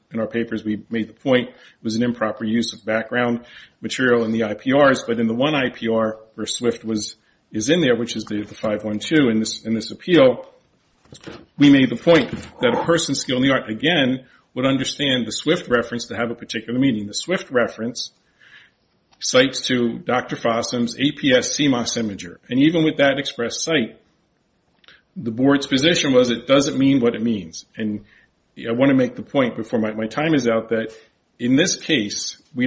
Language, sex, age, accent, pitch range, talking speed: English, male, 40-59, American, 110-135 Hz, 195 wpm